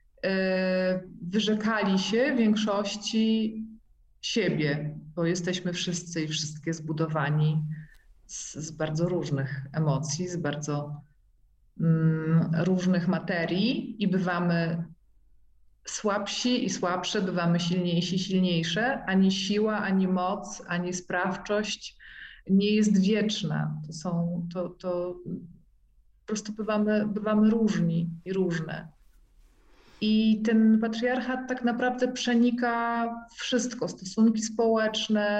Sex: female